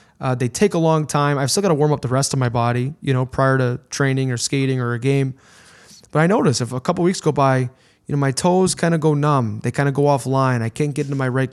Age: 20-39